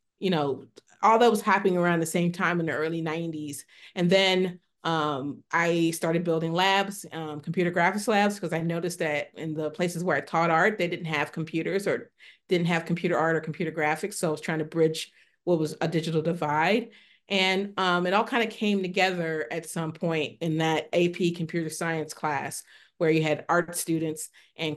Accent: American